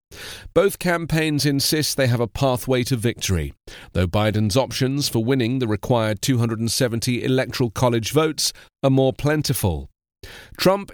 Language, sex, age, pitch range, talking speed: English, male, 40-59, 110-150 Hz, 130 wpm